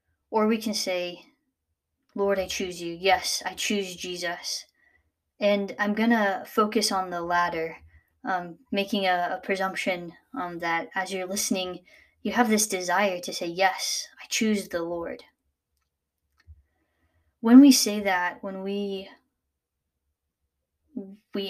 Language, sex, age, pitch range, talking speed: English, female, 20-39, 165-205 Hz, 130 wpm